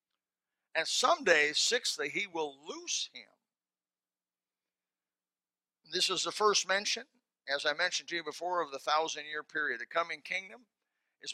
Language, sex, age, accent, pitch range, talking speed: English, male, 60-79, American, 160-225 Hz, 140 wpm